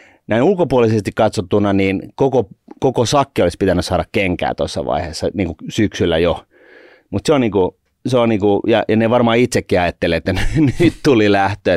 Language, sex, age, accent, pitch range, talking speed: Finnish, male, 30-49, native, 90-115 Hz, 180 wpm